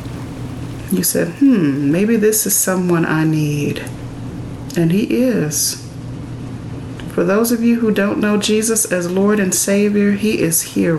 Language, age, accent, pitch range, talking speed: English, 30-49, American, 135-205 Hz, 145 wpm